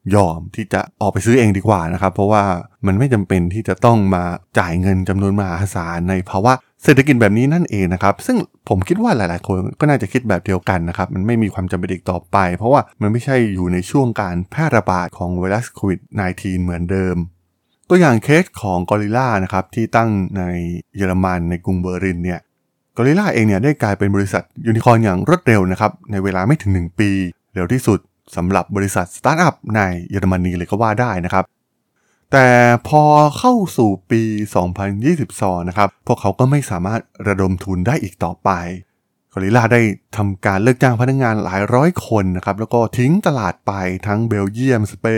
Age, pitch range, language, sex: 20-39, 95-120 Hz, Thai, male